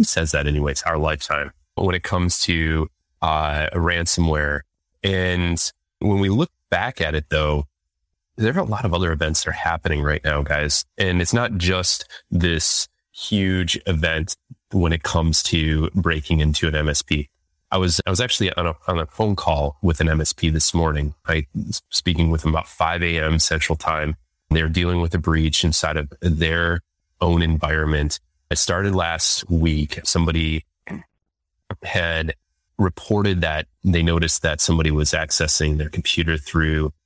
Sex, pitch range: male, 75-90 Hz